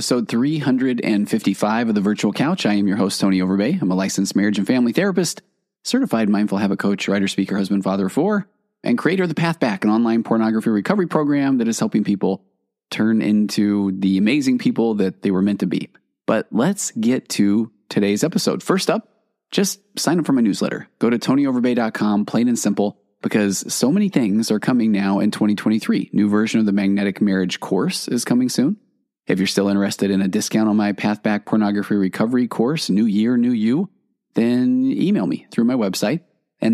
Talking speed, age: 195 wpm, 20-39